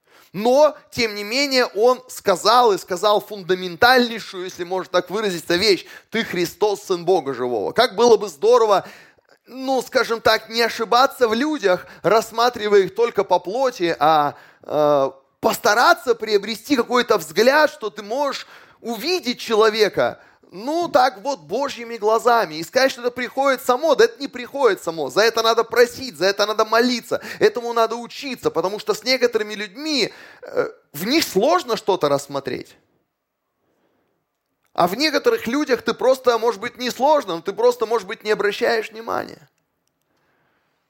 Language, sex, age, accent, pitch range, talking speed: Russian, male, 20-39, native, 195-255 Hz, 150 wpm